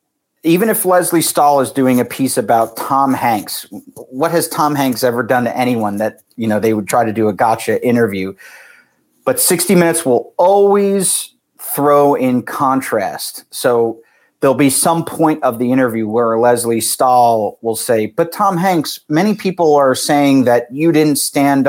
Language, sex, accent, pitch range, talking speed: English, male, American, 120-155 Hz, 170 wpm